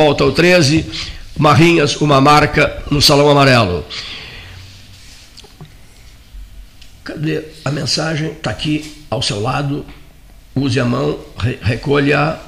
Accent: Brazilian